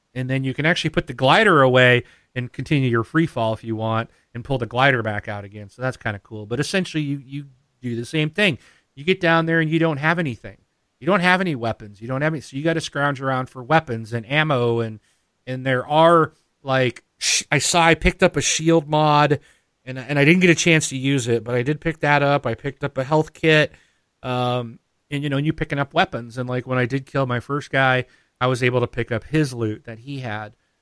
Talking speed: 255 wpm